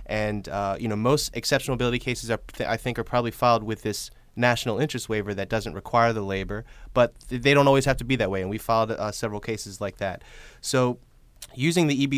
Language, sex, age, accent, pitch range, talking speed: English, male, 30-49, American, 110-125 Hz, 220 wpm